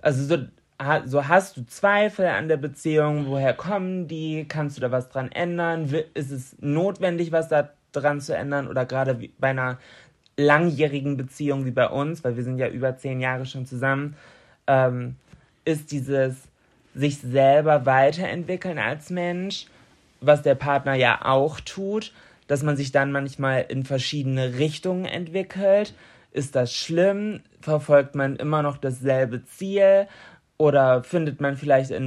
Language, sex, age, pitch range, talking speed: German, male, 20-39, 135-170 Hz, 150 wpm